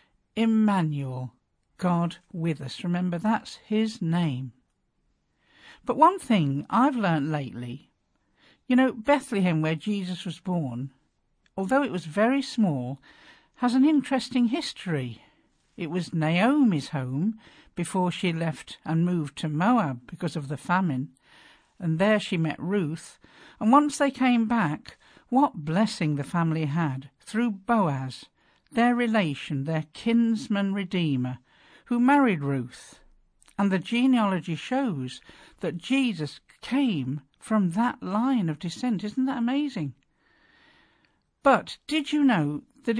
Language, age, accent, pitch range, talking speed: English, 50-69, British, 155-240 Hz, 125 wpm